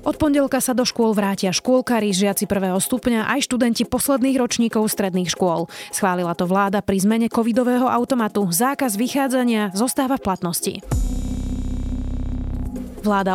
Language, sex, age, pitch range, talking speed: Slovak, female, 30-49, 190-245 Hz, 130 wpm